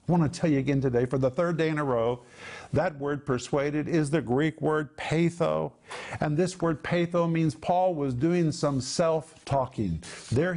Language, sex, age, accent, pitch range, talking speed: English, male, 50-69, American, 150-180 Hz, 185 wpm